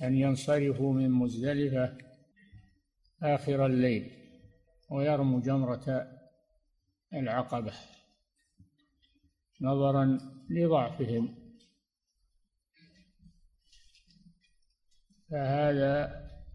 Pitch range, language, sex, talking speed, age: 125-155 Hz, Arabic, male, 45 wpm, 60-79